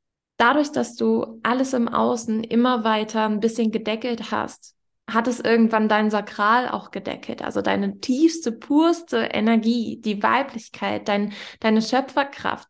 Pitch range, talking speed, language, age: 200-245 Hz, 130 wpm, German, 20-39